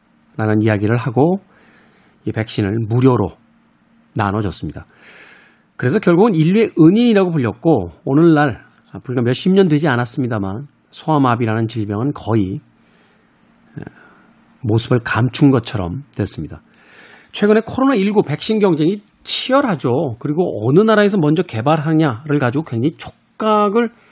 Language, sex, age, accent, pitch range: Korean, male, 40-59, native, 125-195 Hz